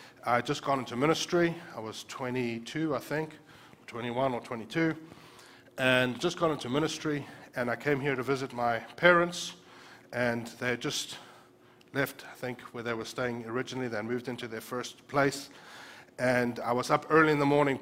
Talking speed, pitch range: 180 wpm, 120-145 Hz